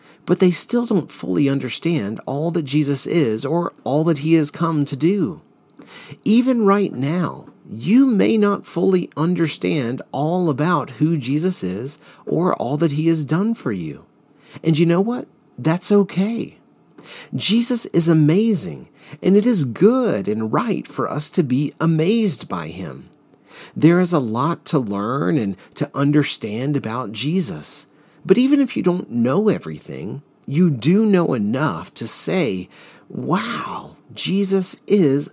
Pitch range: 145-185 Hz